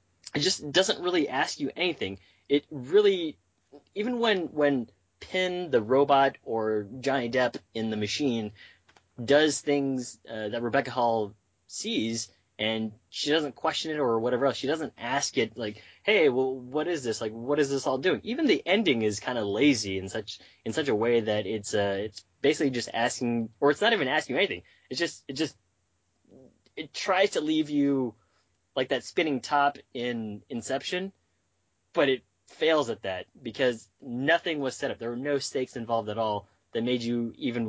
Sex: male